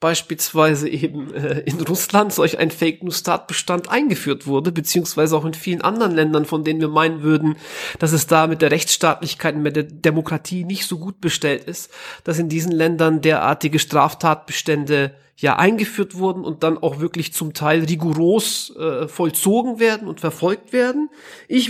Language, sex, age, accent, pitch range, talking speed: German, male, 40-59, German, 165-205 Hz, 165 wpm